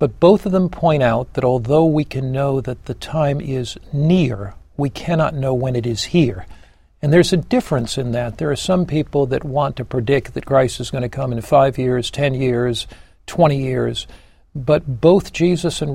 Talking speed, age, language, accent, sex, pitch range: 205 wpm, 60-79, English, American, male, 125-155 Hz